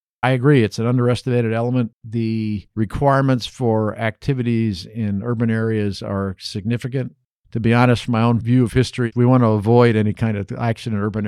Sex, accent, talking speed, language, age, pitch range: male, American, 180 wpm, English, 50-69, 100-120 Hz